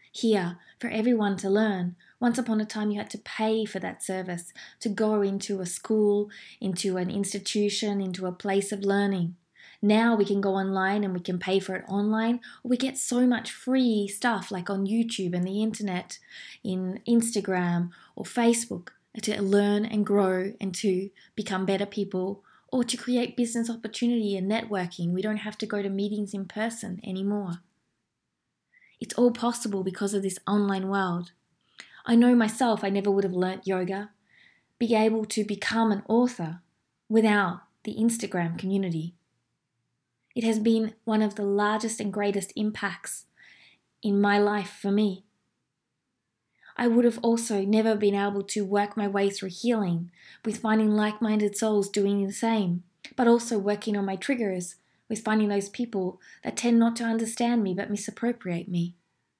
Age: 20-39